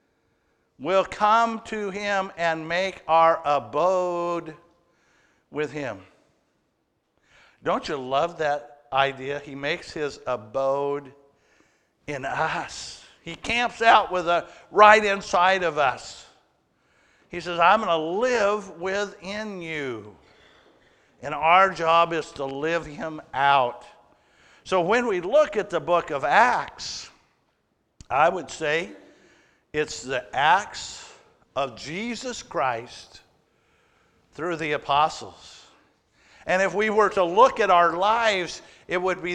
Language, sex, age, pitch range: English, male, 60-79, 150-200 Hz